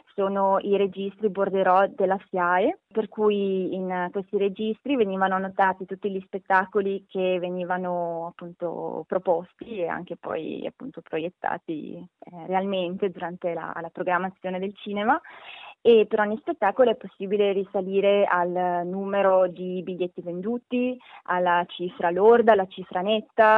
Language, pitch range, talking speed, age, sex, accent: Italian, 180-220 Hz, 130 wpm, 20-39, female, native